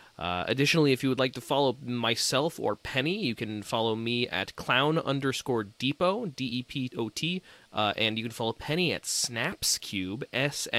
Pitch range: 115-150 Hz